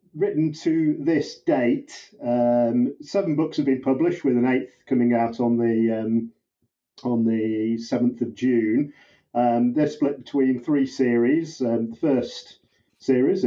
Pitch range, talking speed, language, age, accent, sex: 115-140 Hz, 145 wpm, English, 40-59, British, male